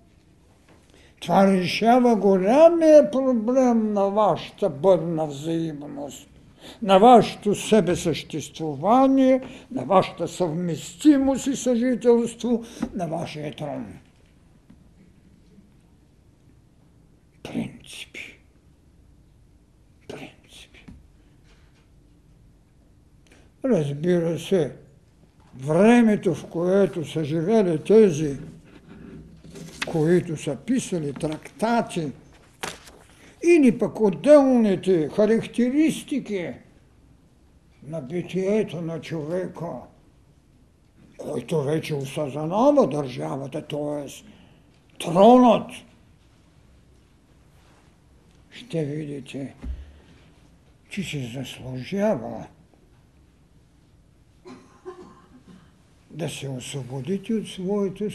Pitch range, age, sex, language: 155-225 Hz, 60-79, male, Bulgarian